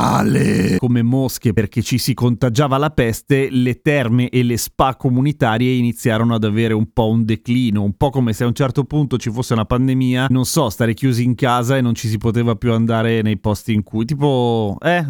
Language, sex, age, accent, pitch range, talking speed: Italian, male, 30-49, native, 120-145 Hz, 205 wpm